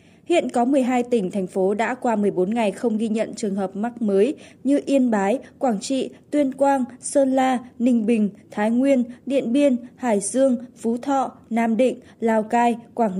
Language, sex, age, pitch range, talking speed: Vietnamese, female, 20-39, 215-265 Hz, 185 wpm